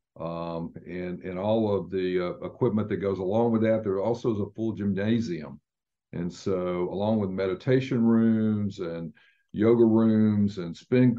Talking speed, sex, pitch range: 160 wpm, male, 95-115 Hz